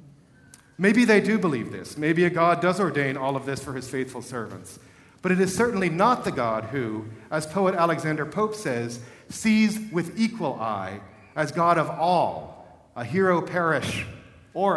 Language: English